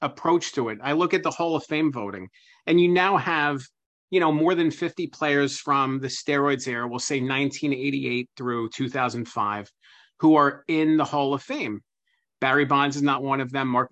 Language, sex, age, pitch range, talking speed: English, male, 40-59, 130-160 Hz, 210 wpm